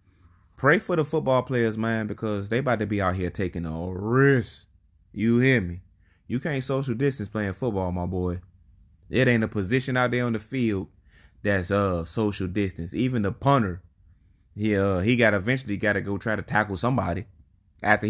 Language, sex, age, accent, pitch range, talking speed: English, male, 20-39, American, 90-115 Hz, 185 wpm